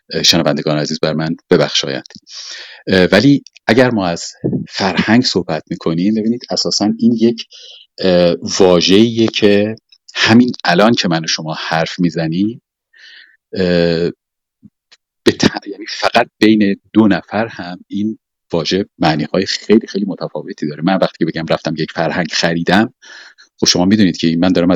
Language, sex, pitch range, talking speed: Persian, male, 80-105 Hz, 125 wpm